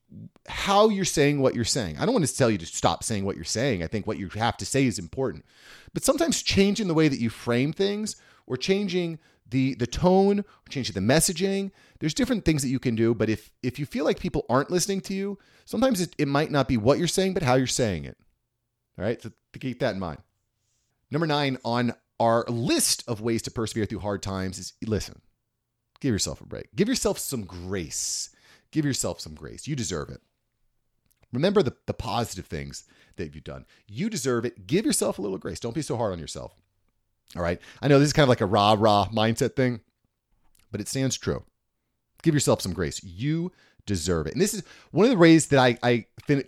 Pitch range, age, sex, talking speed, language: 100-145 Hz, 30-49, male, 220 wpm, English